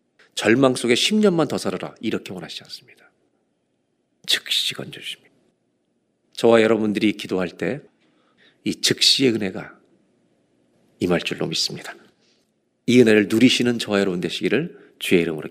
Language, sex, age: Korean, male, 40-59